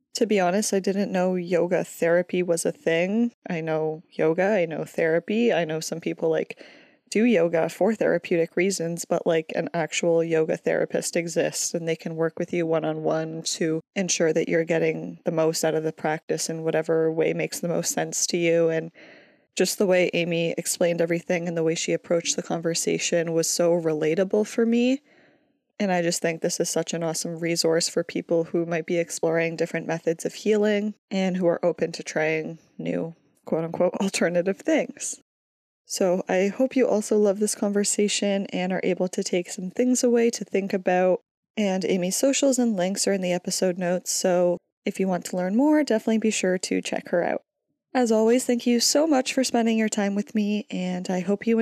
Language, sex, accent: English, female, American